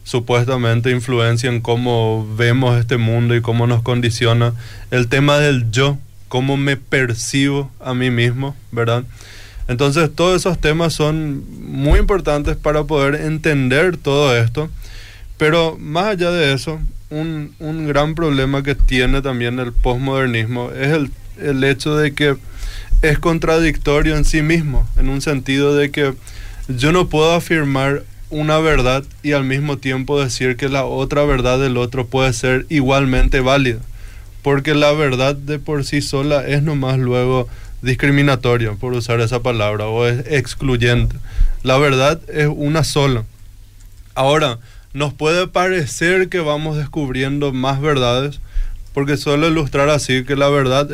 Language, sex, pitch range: Spanish, male, 120-145 Hz